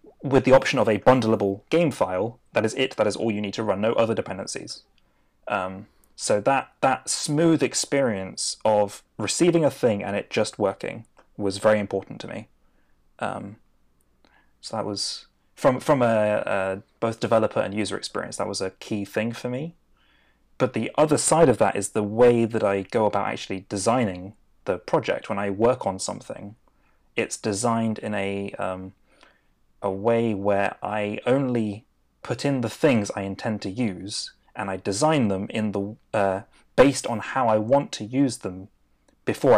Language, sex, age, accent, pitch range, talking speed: English, male, 30-49, British, 95-115 Hz, 175 wpm